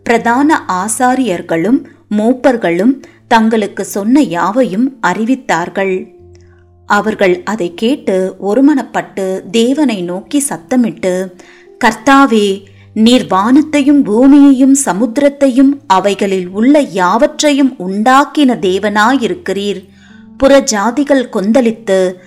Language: Tamil